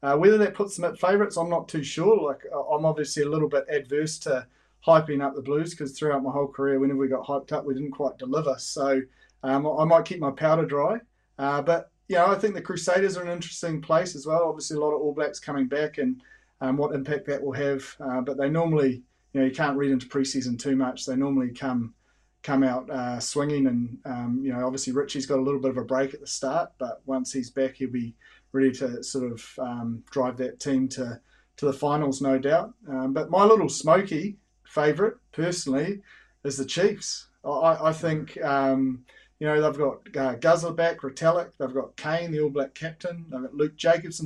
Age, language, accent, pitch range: 30-49, English, Australian, 135-160 Hz